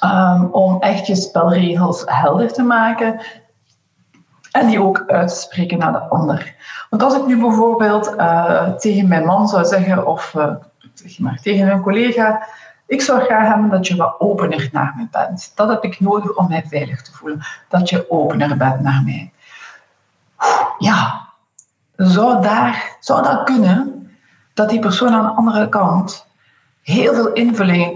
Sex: female